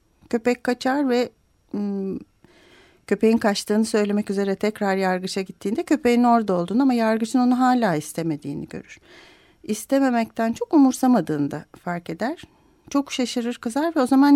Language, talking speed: Turkish, 125 wpm